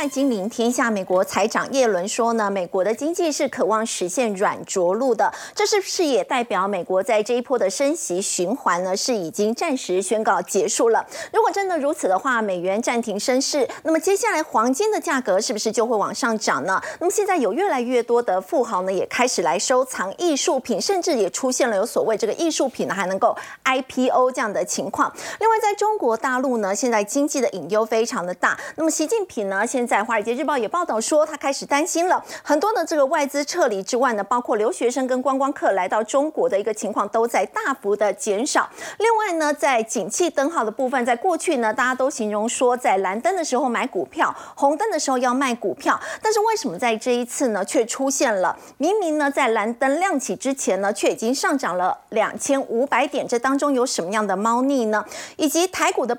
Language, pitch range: Chinese, 220-310 Hz